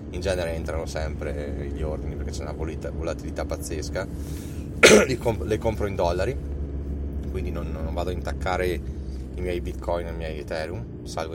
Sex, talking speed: male, 155 wpm